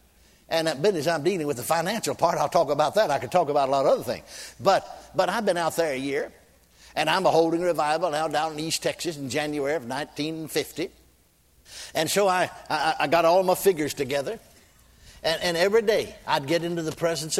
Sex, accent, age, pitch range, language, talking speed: male, American, 60-79, 150-190 Hz, English, 215 wpm